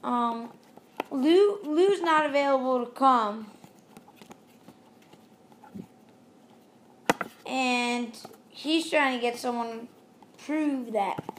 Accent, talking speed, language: American, 85 wpm, English